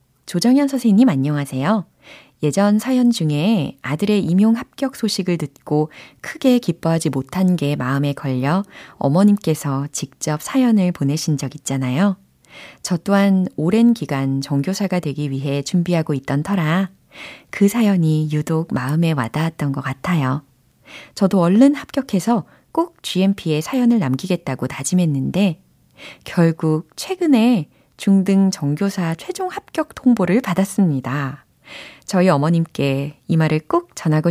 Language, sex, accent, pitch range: Korean, female, native, 150-215 Hz